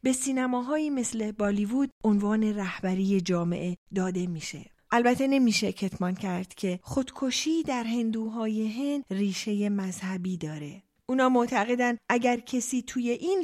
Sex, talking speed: female, 115 wpm